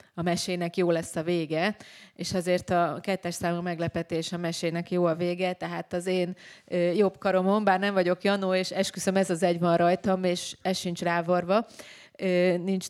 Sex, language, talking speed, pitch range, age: female, Hungarian, 175 wpm, 175-195 Hz, 30-49